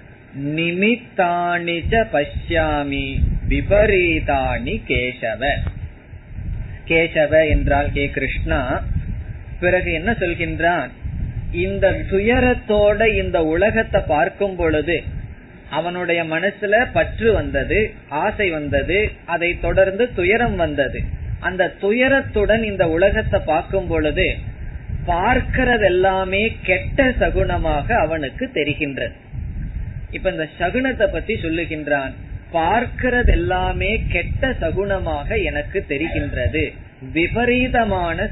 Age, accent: 20-39, native